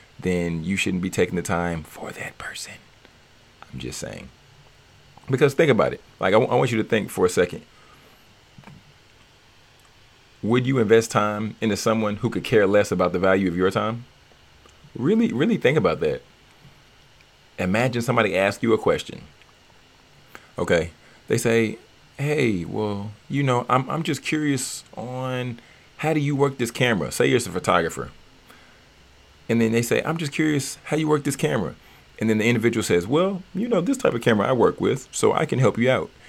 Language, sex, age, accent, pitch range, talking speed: English, male, 40-59, American, 95-125 Hz, 180 wpm